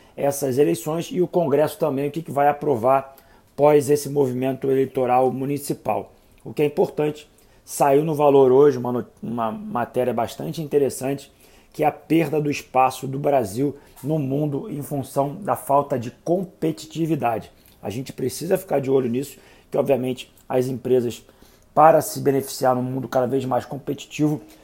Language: Portuguese